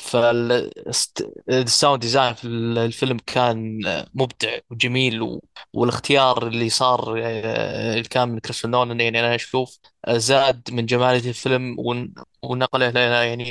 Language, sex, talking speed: Arabic, male, 105 wpm